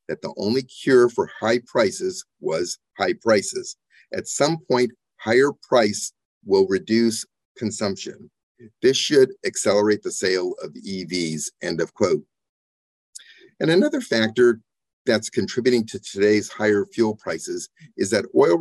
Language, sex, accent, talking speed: English, male, American, 130 wpm